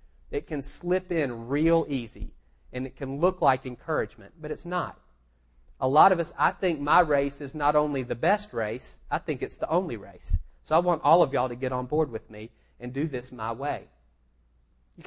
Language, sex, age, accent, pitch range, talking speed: English, male, 30-49, American, 115-155 Hz, 210 wpm